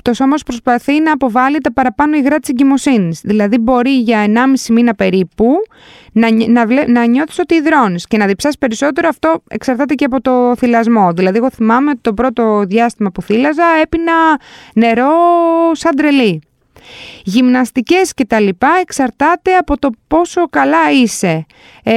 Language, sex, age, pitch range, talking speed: Greek, female, 20-39, 200-280 Hz, 140 wpm